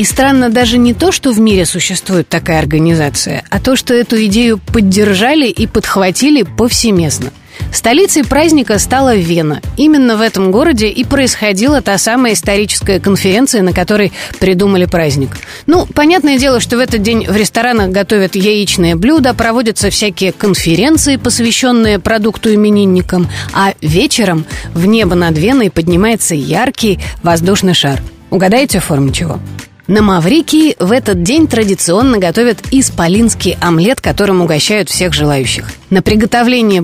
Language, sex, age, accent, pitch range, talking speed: Russian, female, 30-49, native, 180-245 Hz, 140 wpm